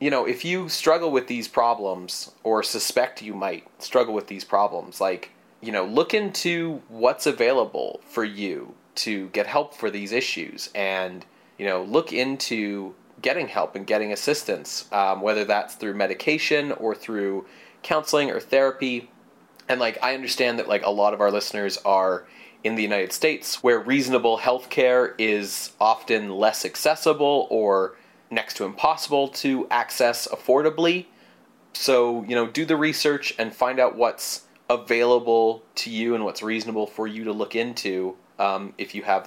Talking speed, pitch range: 165 wpm, 100-135 Hz